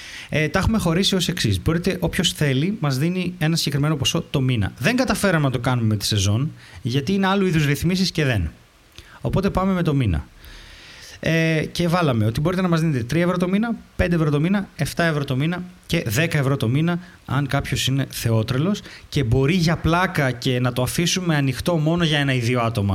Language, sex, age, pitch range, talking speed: Greek, male, 20-39, 125-170 Hz, 210 wpm